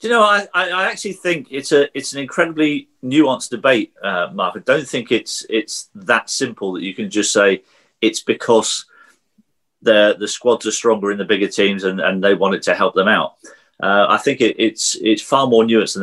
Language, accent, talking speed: English, British, 210 wpm